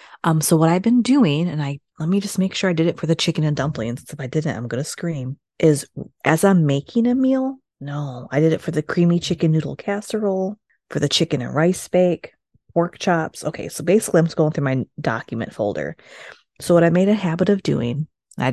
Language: English